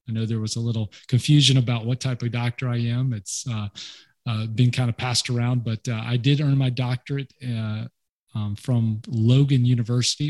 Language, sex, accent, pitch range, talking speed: English, male, American, 115-130 Hz, 200 wpm